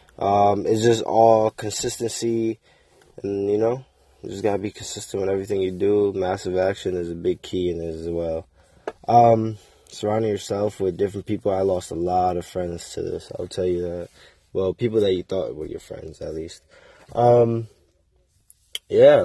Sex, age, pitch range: male, 20-39, 90-110 Hz